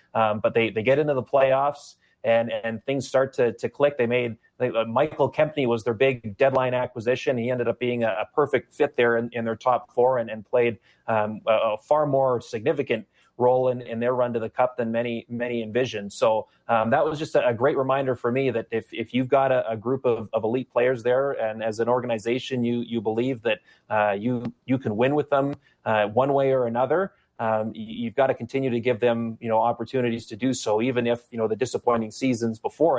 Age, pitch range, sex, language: 30-49, 115-130 Hz, male, English